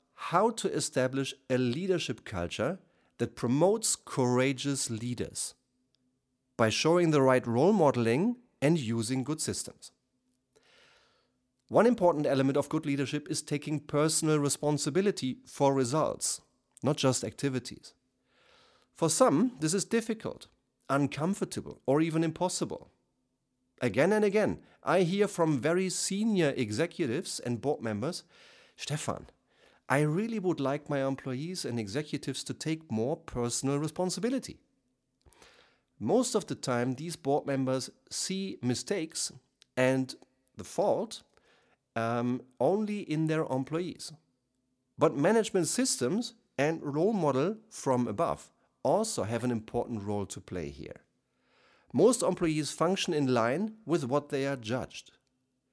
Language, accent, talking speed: German, German, 120 wpm